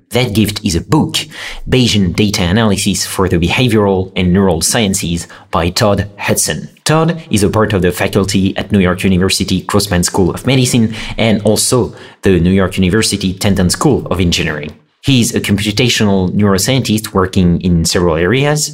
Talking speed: 165 wpm